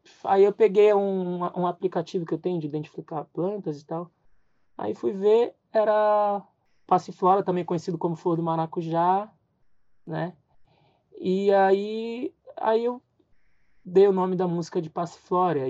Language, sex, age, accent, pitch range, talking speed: Portuguese, male, 20-39, Brazilian, 145-180 Hz, 140 wpm